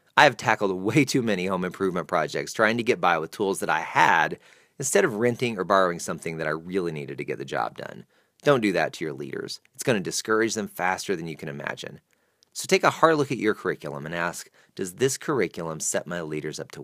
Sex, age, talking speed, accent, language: male, 30-49, 240 wpm, American, English